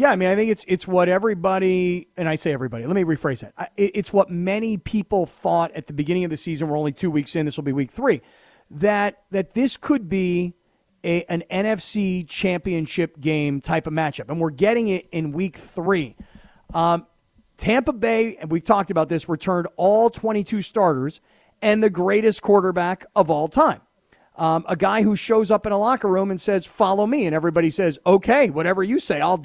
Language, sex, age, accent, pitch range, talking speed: English, male, 40-59, American, 170-225 Hz, 200 wpm